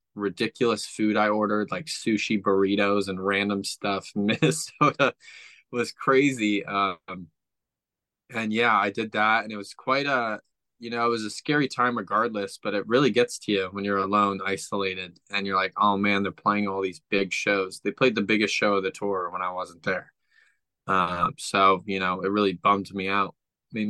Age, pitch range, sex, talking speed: 20-39, 95-110 Hz, male, 190 wpm